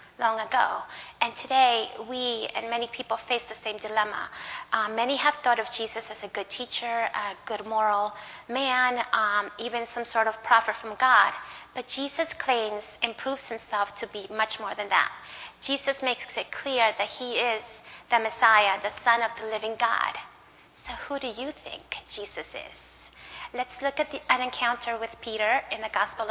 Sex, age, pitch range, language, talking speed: female, 30-49, 220-265 Hz, English, 175 wpm